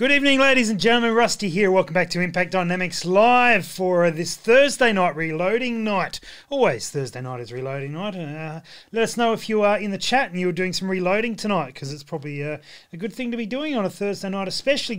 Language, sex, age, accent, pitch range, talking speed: English, male, 30-49, Australian, 150-205 Hz, 230 wpm